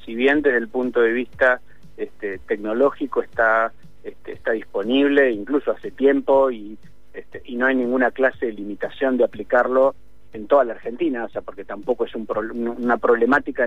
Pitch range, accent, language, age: 120-150 Hz, Argentinian, Spanish, 30-49